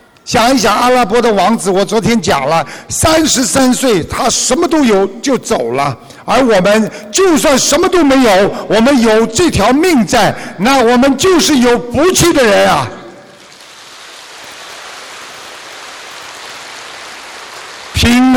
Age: 60-79